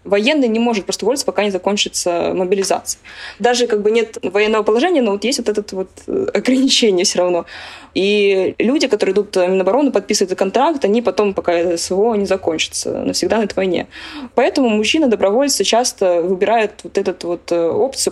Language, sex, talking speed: Russian, female, 165 wpm